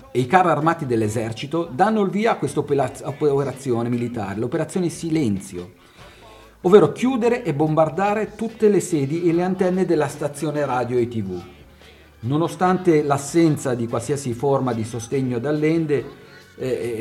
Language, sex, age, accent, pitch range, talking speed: Italian, male, 40-59, native, 115-155 Hz, 135 wpm